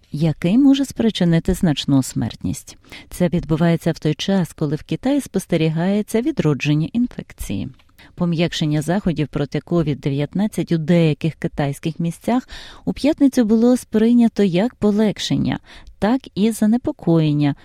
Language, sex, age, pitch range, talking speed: Ukrainian, female, 30-49, 150-205 Hz, 110 wpm